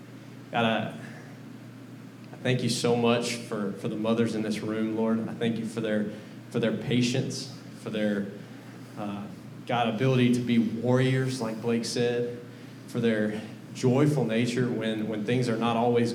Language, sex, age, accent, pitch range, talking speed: English, male, 20-39, American, 110-120 Hz, 165 wpm